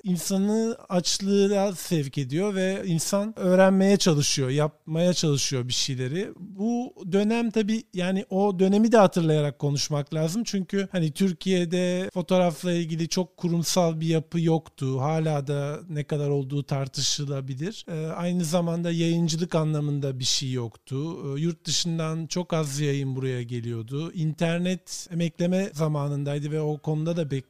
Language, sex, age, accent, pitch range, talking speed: Turkish, male, 40-59, native, 145-190 Hz, 130 wpm